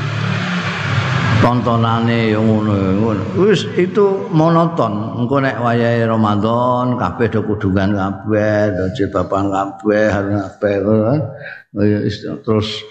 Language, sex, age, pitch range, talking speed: Indonesian, male, 50-69, 115-155 Hz, 95 wpm